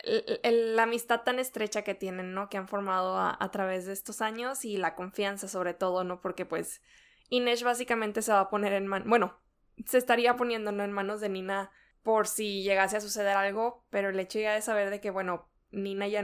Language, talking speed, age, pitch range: Spanish, 215 wpm, 20-39, 200-235 Hz